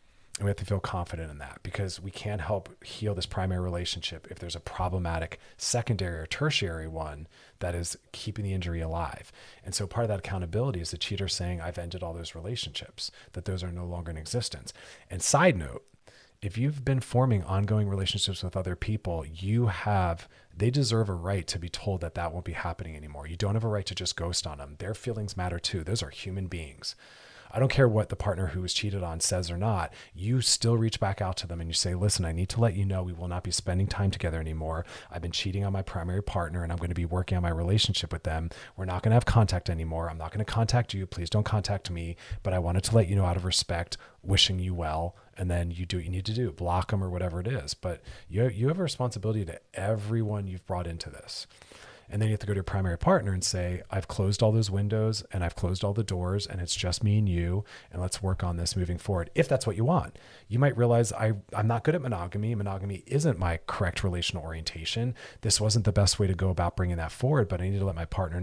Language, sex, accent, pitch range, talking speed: English, male, American, 85-105 Hz, 245 wpm